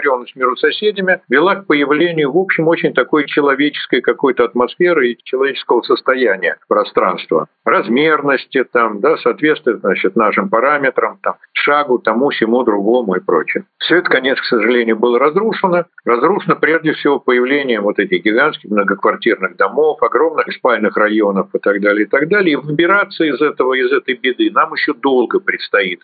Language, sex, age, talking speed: Russian, male, 50-69, 150 wpm